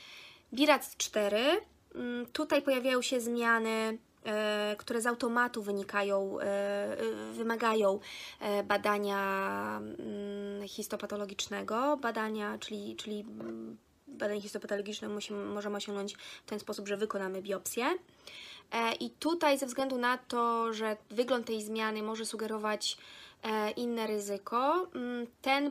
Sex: female